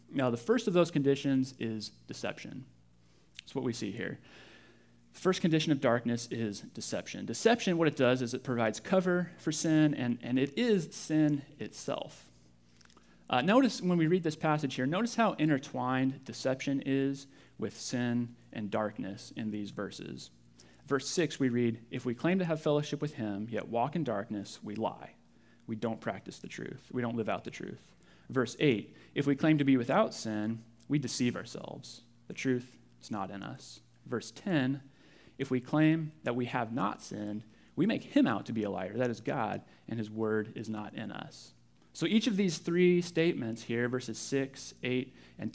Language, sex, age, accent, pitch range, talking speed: English, male, 30-49, American, 110-150 Hz, 185 wpm